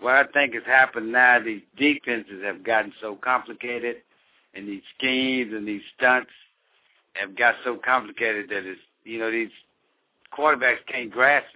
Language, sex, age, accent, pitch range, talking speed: English, male, 60-79, American, 105-125 Hz, 155 wpm